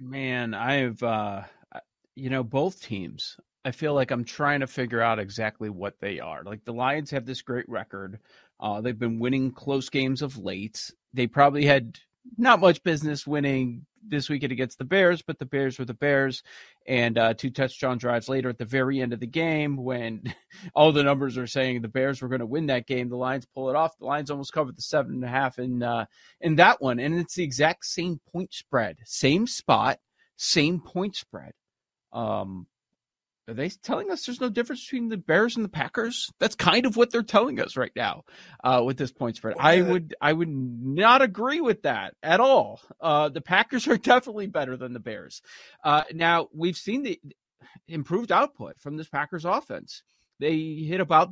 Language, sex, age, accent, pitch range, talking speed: English, male, 30-49, American, 130-175 Hz, 200 wpm